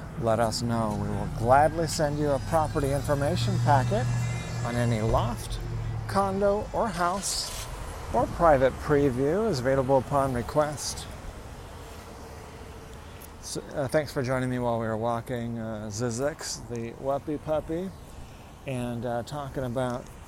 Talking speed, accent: 130 wpm, American